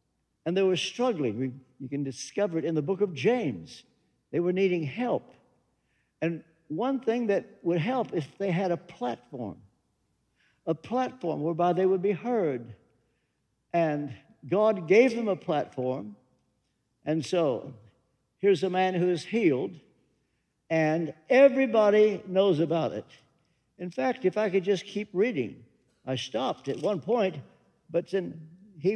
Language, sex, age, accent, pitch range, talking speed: English, male, 60-79, American, 155-210 Hz, 150 wpm